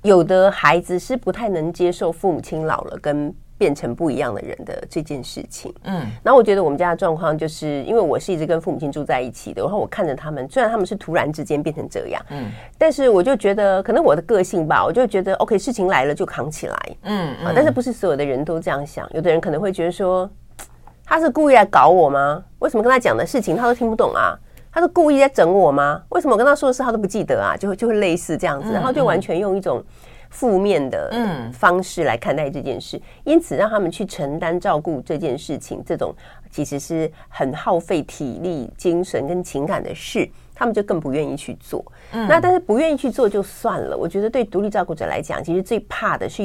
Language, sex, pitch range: Chinese, female, 160-250 Hz